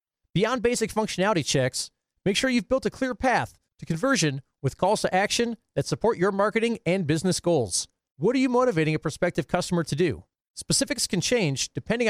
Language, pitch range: English, 150-220 Hz